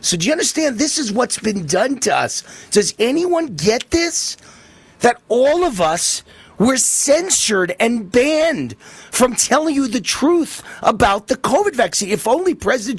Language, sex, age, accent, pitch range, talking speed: English, male, 40-59, American, 195-300 Hz, 160 wpm